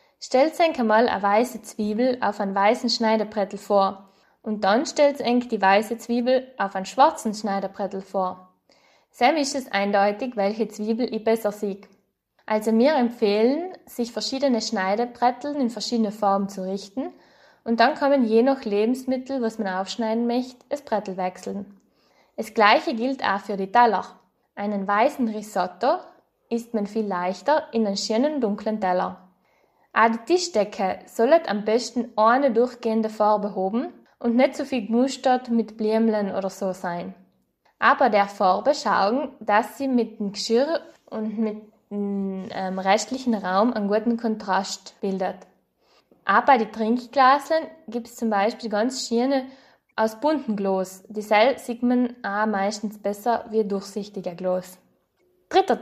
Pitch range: 200-245 Hz